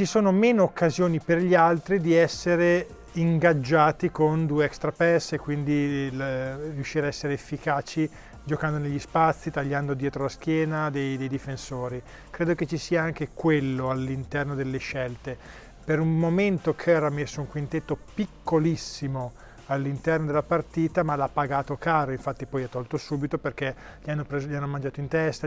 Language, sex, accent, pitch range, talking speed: Italian, male, native, 140-165 Hz, 160 wpm